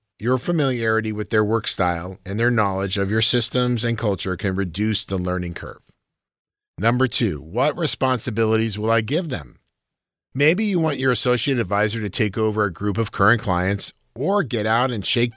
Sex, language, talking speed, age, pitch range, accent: male, English, 180 wpm, 50-69, 100-125 Hz, American